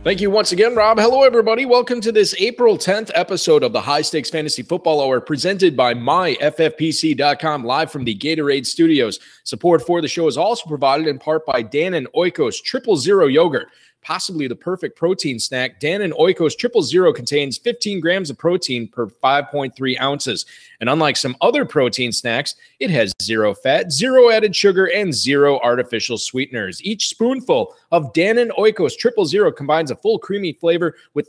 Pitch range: 145-220 Hz